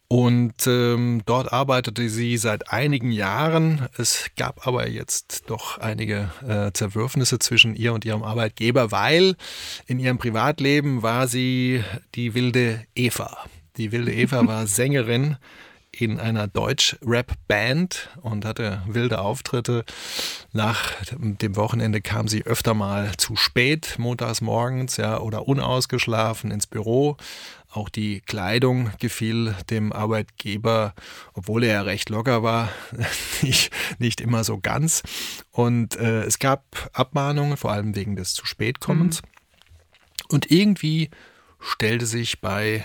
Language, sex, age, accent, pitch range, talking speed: German, male, 30-49, German, 105-125 Hz, 125 wpm